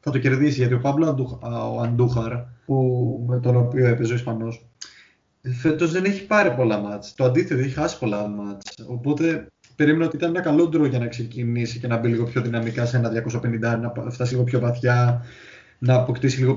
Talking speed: 185 wpm